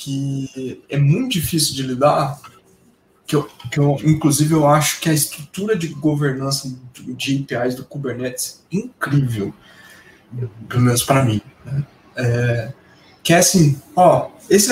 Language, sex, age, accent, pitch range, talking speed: Portuguese, male, 20-39, Brazilian, 140-190 Hz, 135 wpm